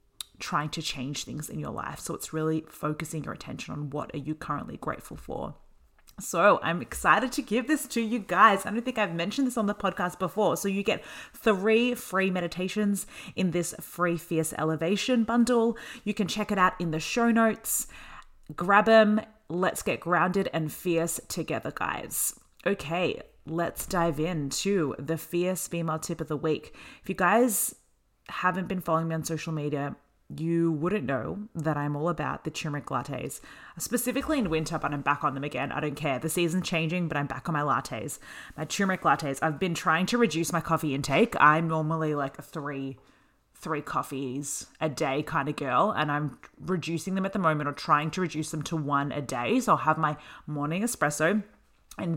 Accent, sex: Australian, female